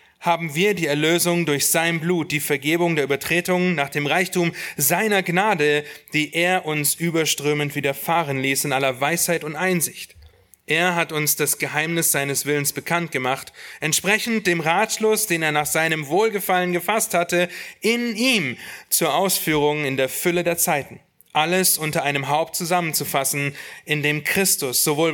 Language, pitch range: Russian, 145-180 Hz